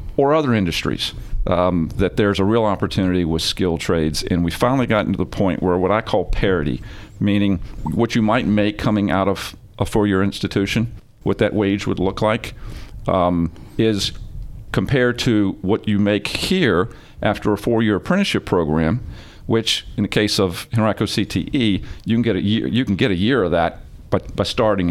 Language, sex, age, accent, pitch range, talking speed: English, male, 50-69, American, 95-115 Hz, 185 wpm